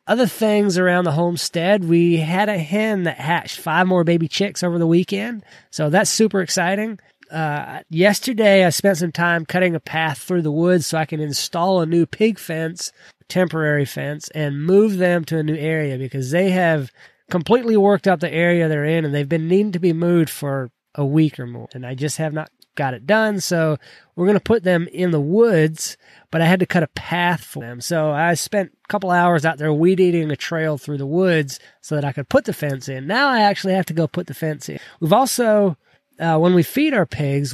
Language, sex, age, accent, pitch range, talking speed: English, male, 20-39, American, 150-185 Hz, 225 wpm